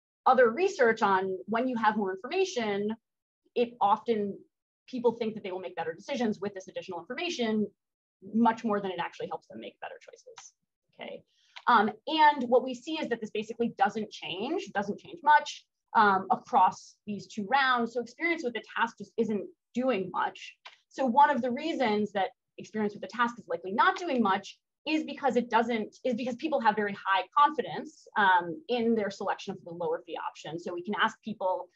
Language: Chinese